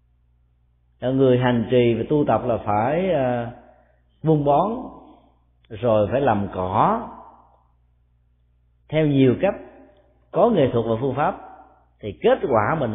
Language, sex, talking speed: Vietnamese, male, 125 wpm